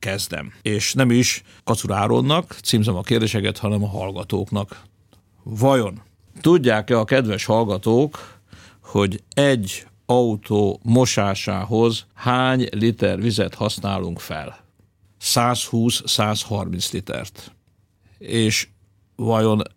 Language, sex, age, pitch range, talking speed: Hungarian, male, 50-69, 100-115 Hz, 90 wpm